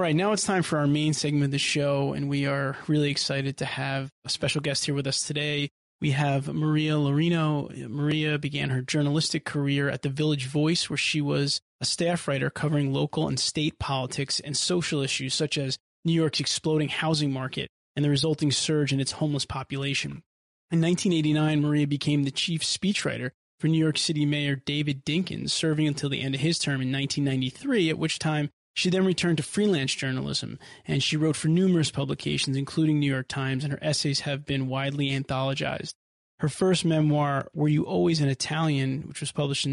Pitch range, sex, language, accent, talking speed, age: 135-155 Hz, male, English, American, 195 wpm, 20-39